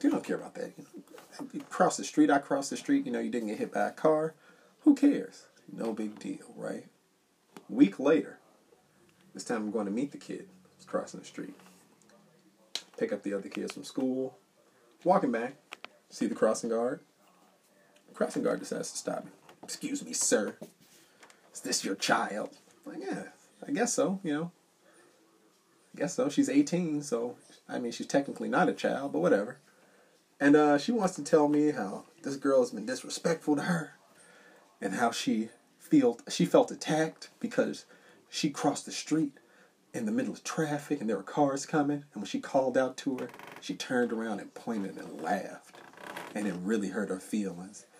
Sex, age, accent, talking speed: male, 30-49, American, 190 wpm